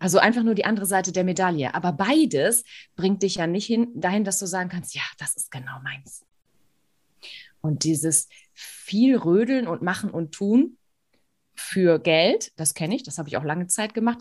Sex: female